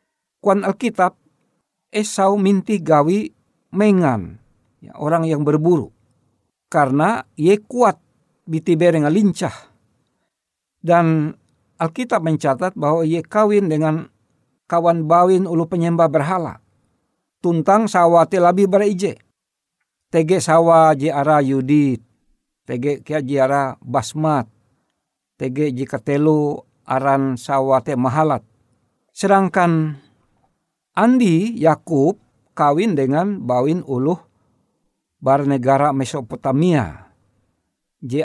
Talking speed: 85 wpm